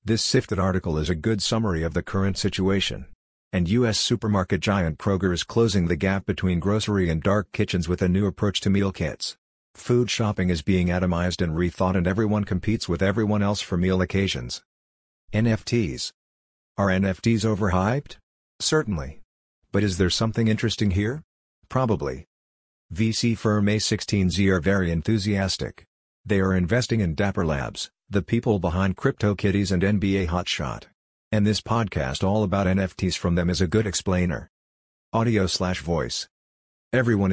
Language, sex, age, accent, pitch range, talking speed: English, male, 50-69, American, 90-105 Hz, 155 wpm